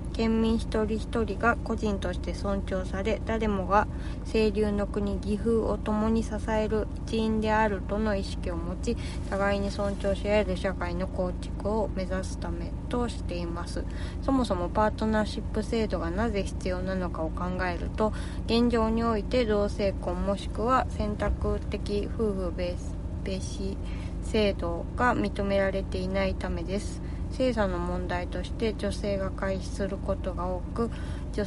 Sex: female